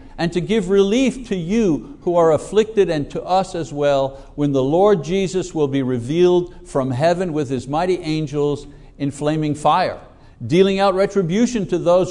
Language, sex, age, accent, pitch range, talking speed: English, male, 60-79, American, 135-190 Hz, 175 wpm